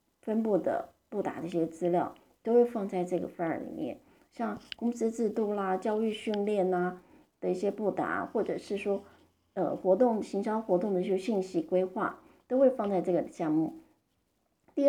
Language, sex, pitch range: Chinese, female, 190-255 Hz